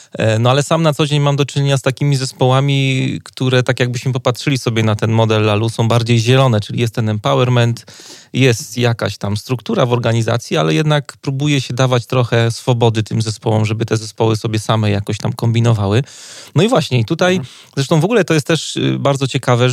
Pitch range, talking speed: 115-135 Hz, 195 wpm